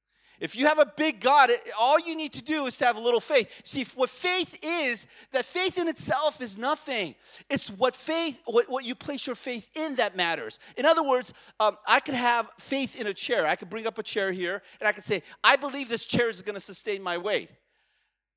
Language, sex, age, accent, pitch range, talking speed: English, male, 30-49, American, 200-275 Hz, 230 wpm